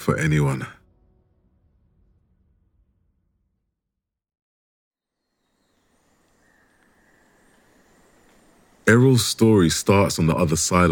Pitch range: 80-100 Hz